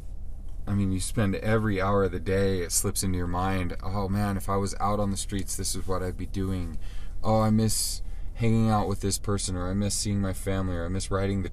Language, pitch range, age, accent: English, 70-95 Hz, 20-39, American